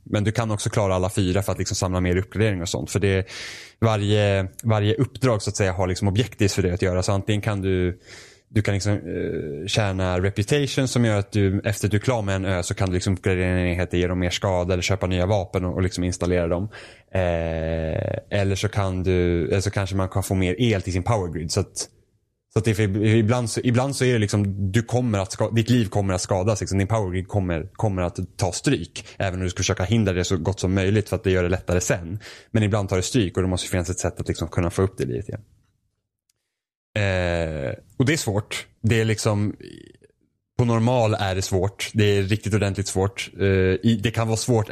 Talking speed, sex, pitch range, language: 235 wpm, male, 95-110 Hz, Swedish